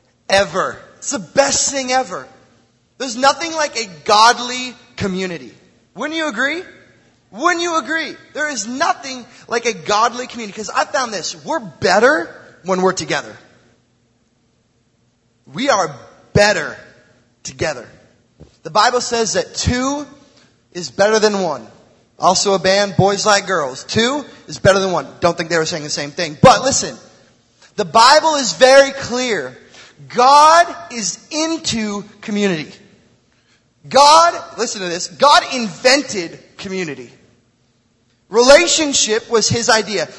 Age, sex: 30-49, male